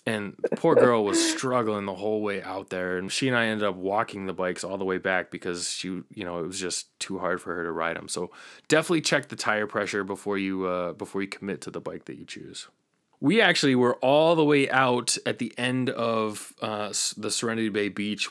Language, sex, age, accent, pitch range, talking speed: English, male, 20-39, American, 100-130 Hz, 235 wpm